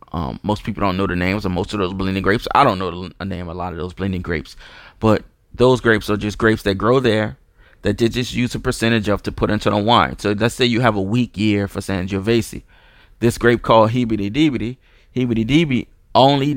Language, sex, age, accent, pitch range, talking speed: English, male, 30-49, American, 95-115 Hz, 230 wpm